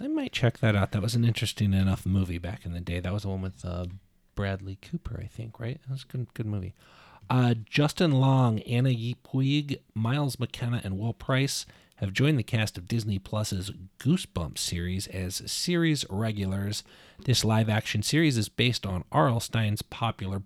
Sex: male